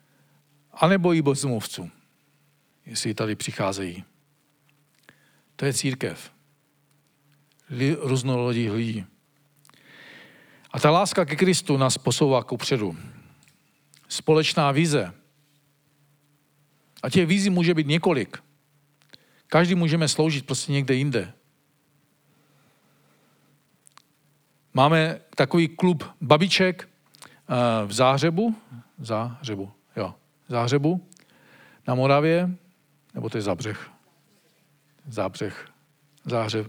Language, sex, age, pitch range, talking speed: Czech, male, 50-69, 130-170 Hz, 80 wpm